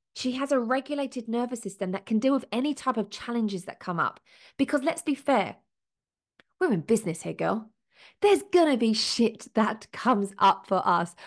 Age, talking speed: 20-39, 185 wpm